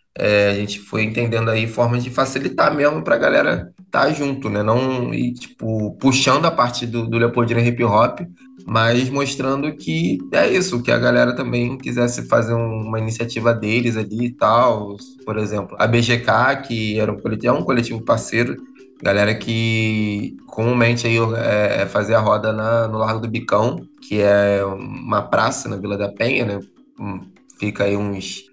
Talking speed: 175 wpm